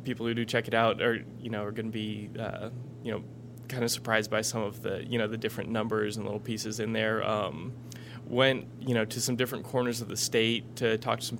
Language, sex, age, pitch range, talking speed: English, male, 20-39, 105-120 Hz, 255 wpm